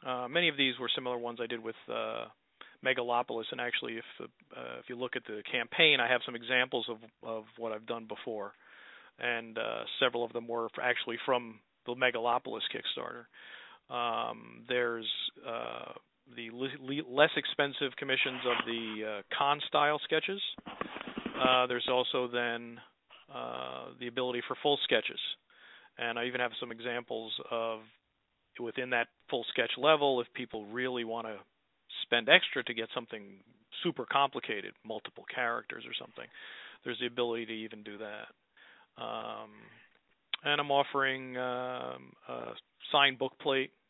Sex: male